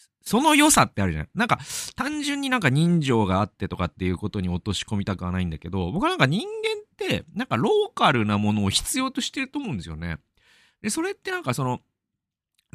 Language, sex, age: Japanese, male, 40-59